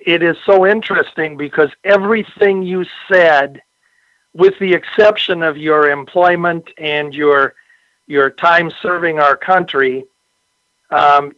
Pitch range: 150-190 Hz